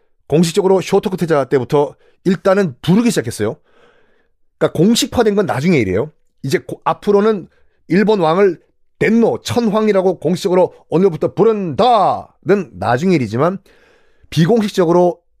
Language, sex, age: Korean, male, 40-59